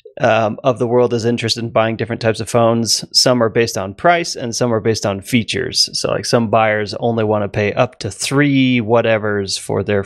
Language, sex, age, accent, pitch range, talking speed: English, male, 30-49, American, 110-145 Hz, 220 wpm